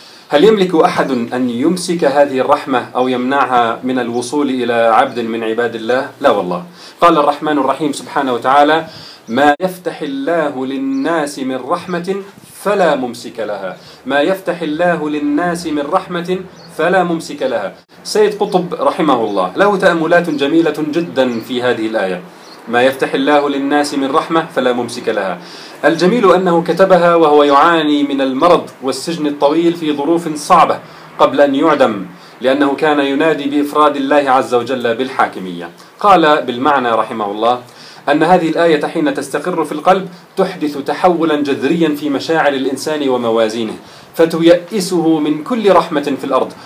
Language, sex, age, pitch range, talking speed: Arabic, male, 40-59, 135-170 Hz, 140 wpm